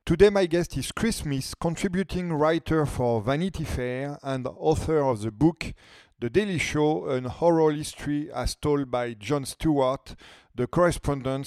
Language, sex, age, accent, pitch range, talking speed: French, male, 40-59, French, 130-170 Hz, 150 wpm